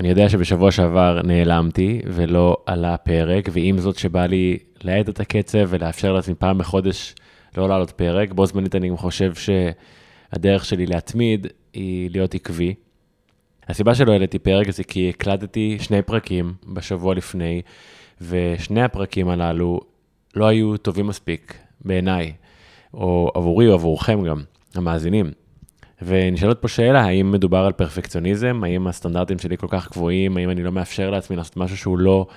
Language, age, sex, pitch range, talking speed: Hebrew, 20-39, male, 90-100 Hz, 150 wpm